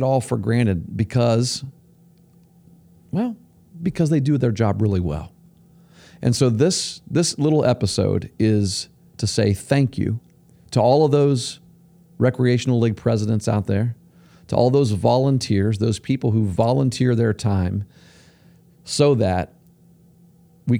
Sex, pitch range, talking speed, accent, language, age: male, 105-155 Hz, 130 wpm, American, English, 40-59